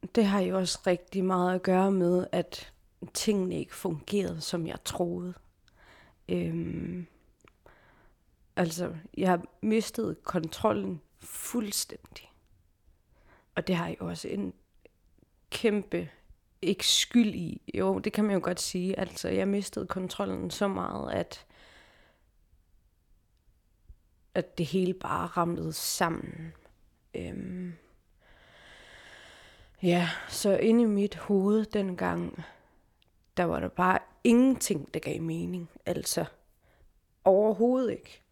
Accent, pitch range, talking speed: native, 165-215 Hz, 115 wpm